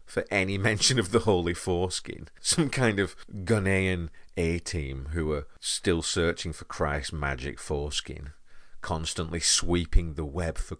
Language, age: English, 40-59